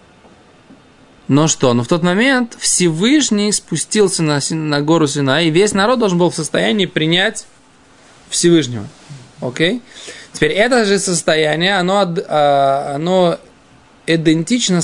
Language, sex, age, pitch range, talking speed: Russian, male, 20-39, 145-185 Hz, 115 wpm